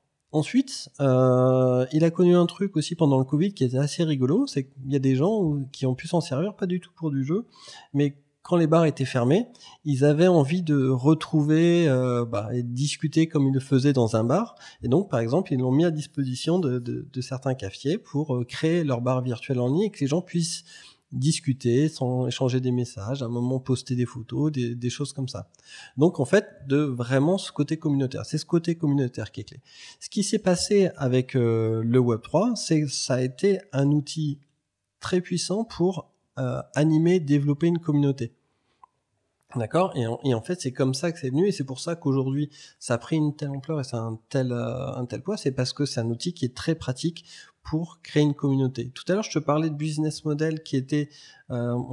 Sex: male